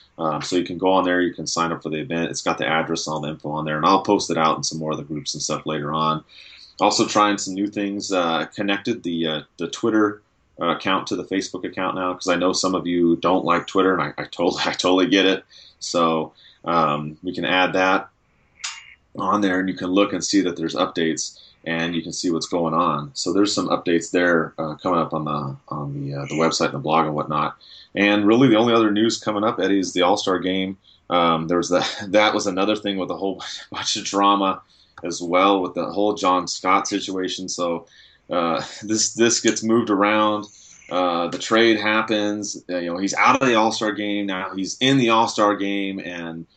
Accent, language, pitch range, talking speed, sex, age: American, English, 80-100 Hz, 235 wpm, male, 30-49